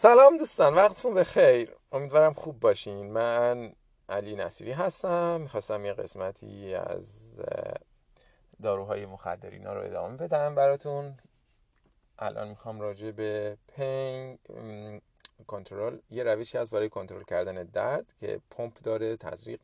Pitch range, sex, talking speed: 105-140 Hz, male, 120 wpm